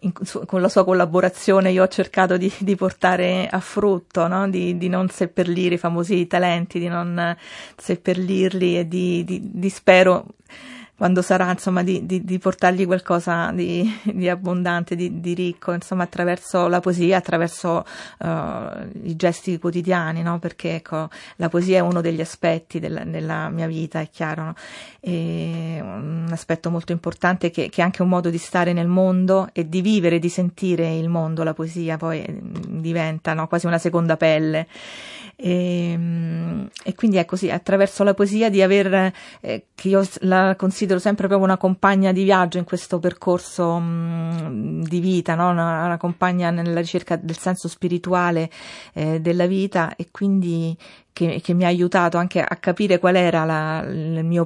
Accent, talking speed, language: native, 165 wpm, Italian